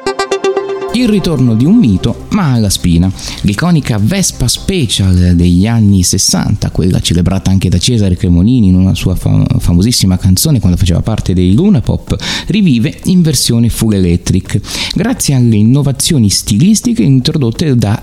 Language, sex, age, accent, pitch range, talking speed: Italian, male, 30-49, native, 90-130 Hz, 140 wpm